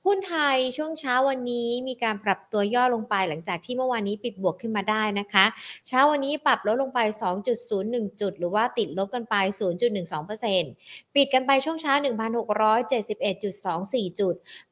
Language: Thai